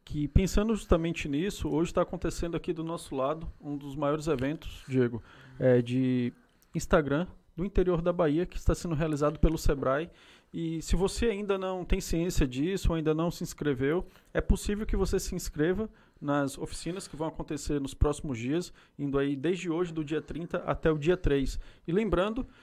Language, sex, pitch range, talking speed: Portuguese, male, 145-175 Hz, 180 wpm